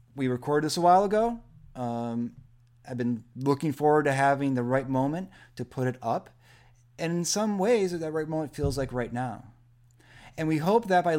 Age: 30-49